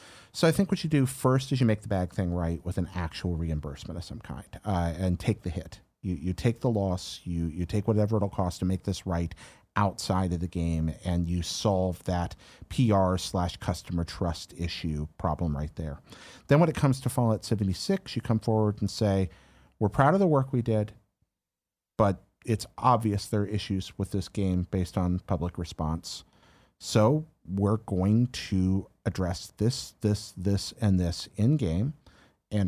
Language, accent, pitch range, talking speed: English, American, 90-115 Hz, 185 wpm